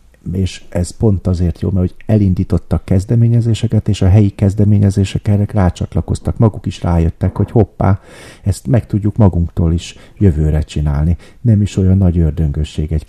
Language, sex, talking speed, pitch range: Hungarian, male, 150 wpm, 80-95 Hz